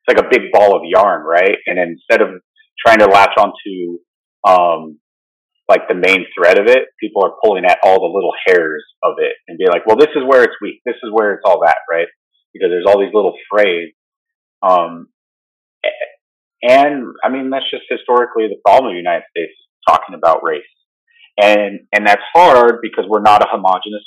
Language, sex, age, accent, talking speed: English, male, 30-49, American, 195 wpm